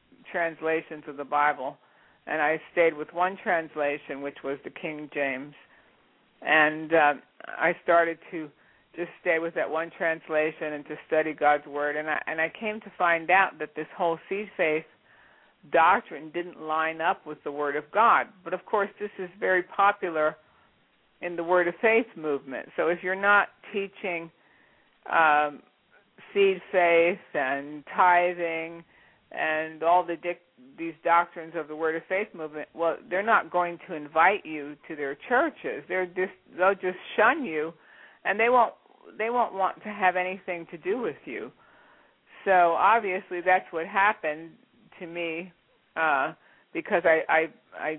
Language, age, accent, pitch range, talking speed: English, 60-79, American, 155-185 Hz, 160 wpm